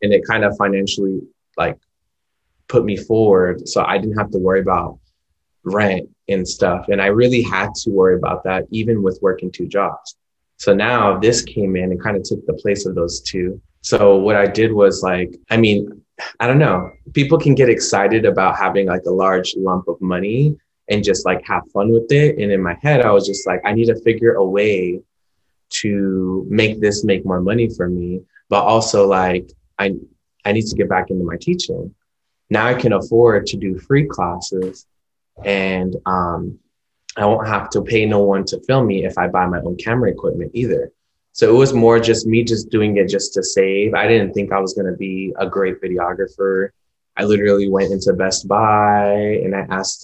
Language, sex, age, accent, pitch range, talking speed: English, male, 20-39, American, 95-110 Hz, 205 wpm